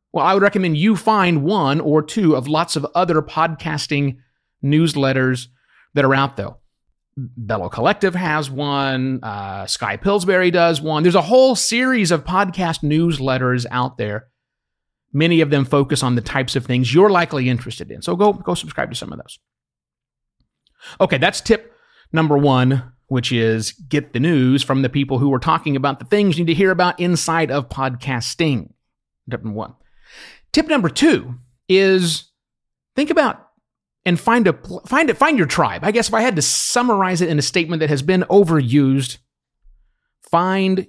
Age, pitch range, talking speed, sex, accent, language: 30-49, 130-190 Hz, 175 wpm, male, American, English